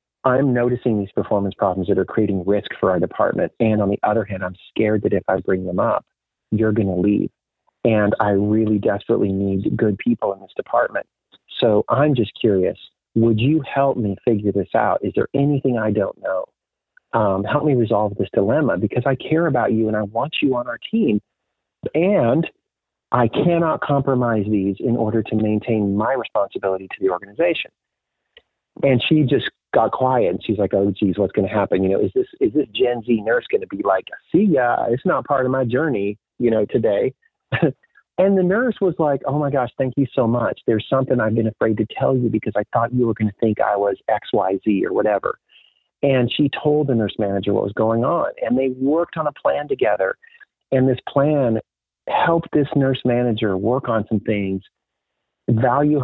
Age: 40-59